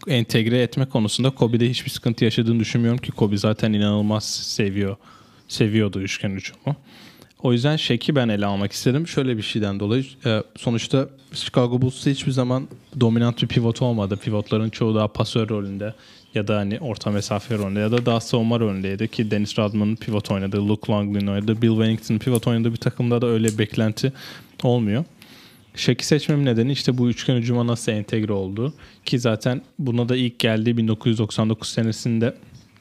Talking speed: 165 wpm